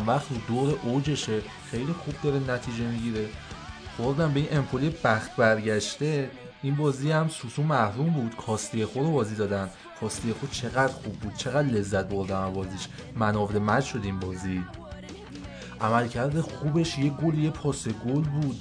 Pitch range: 110-150 Hz